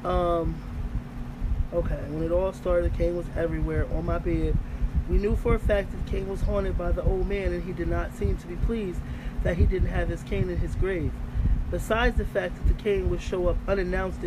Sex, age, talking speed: male, 20-39, 225 wpm